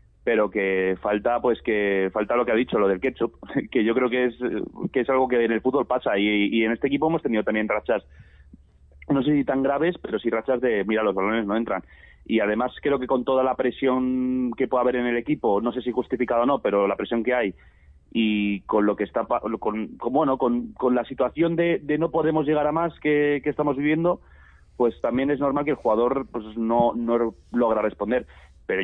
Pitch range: 110-130 Hz